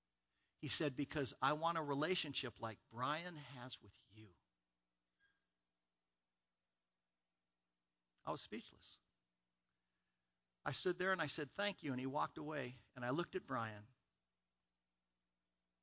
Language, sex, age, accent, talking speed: English, male, 60-79, American, 120 wpm